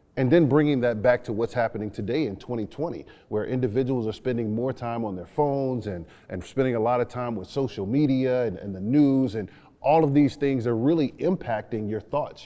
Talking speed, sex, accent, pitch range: 210 wpm, male, American, 115-140 Hz